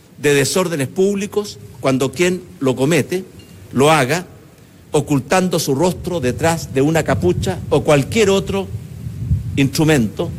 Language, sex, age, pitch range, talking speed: Spanish, male, 60-79, 130-175 Hz, 115 wpm